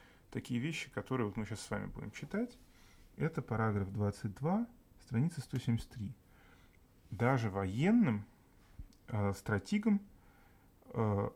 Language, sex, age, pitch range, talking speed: Russian, male, 30-49, 100-130 Hz, 100 wpm